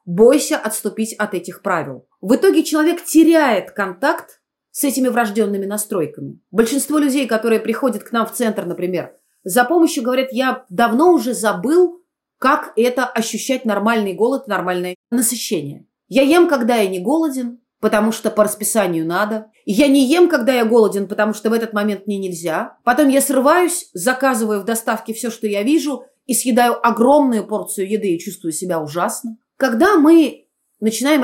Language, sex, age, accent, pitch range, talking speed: Russian, female, 30-49, native, 210-275 Hz, 160 wpm